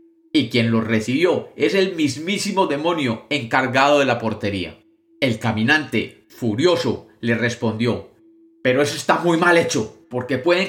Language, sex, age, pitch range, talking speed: Spanish, male, 30-49, 115-190 Hz, 140 wpm